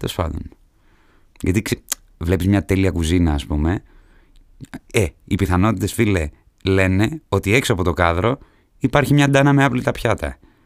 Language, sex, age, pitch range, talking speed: Greek, male, 30-49, 90-125 Hz, 130 wpm